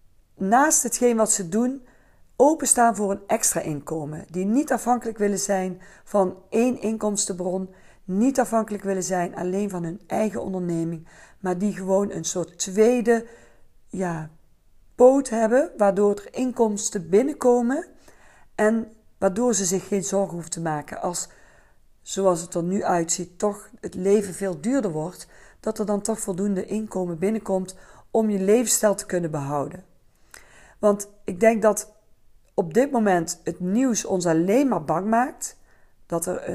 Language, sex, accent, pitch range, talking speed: Dutch, female, Dutch, 180-225 Hz, 145 wpm